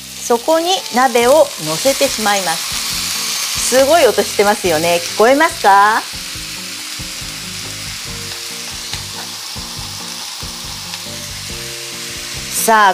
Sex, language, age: female, Japanese, 40-59